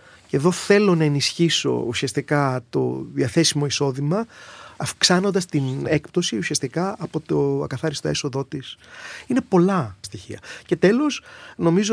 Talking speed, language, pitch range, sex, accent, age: 120 wpm, Greek, 120-160 Hz, male, native, 30-49